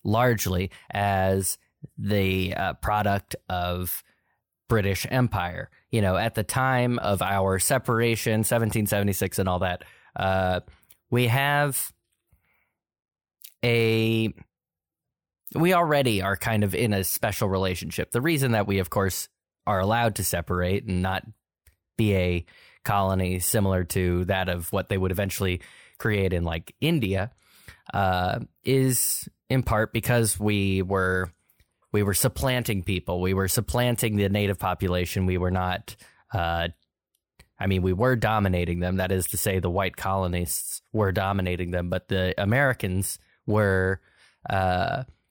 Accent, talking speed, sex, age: American, 135 wpm, male, 20-39